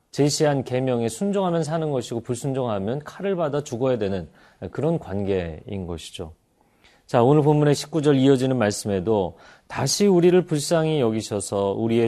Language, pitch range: Korean, 100-145 Hz